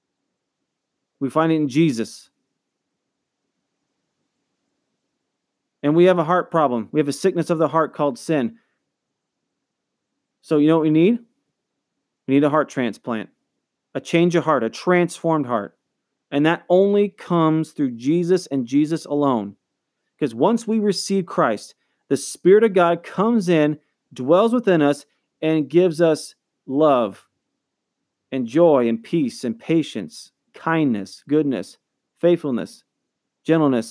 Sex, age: male, 30-49